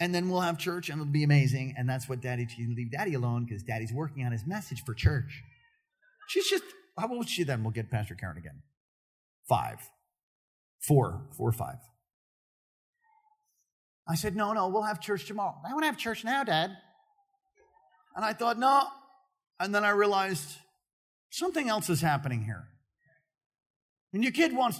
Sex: male